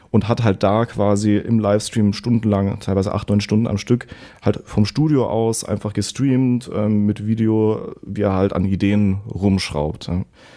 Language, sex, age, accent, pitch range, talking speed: German, male, 30-49, German, 100-115 Hz, 170 wpm